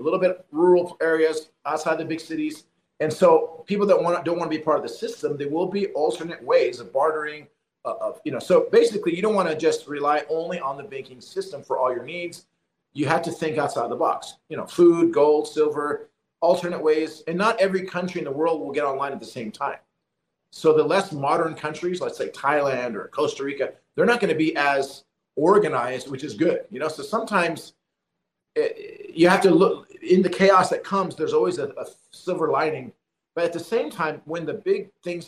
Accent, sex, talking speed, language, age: American, male, 220 wpm, English, 40-59